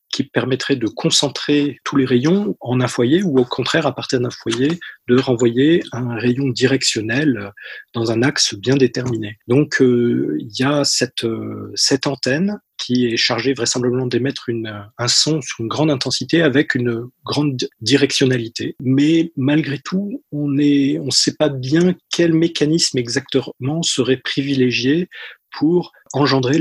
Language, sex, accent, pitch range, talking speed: English, male, French, 125-150 Hz, 155 wpm